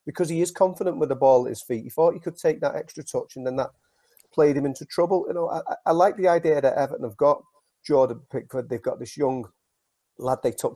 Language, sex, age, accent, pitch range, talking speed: English, male, 40-59, British, 120-165 Hz, 250 wpm